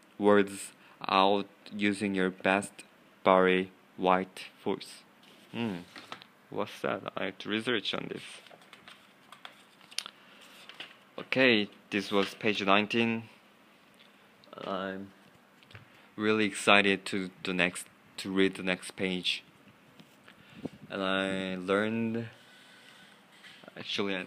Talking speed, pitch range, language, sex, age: 90 wpm, 90-105 Hz, English, male, 20-39